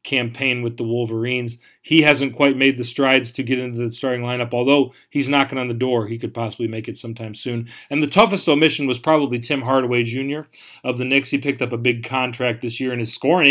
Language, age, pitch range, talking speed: English, 40-59, 120-135 Hz, 230 wpm